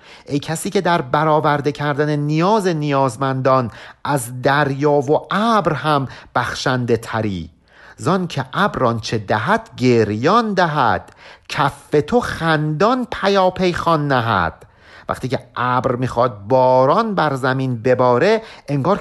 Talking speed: 115 wpm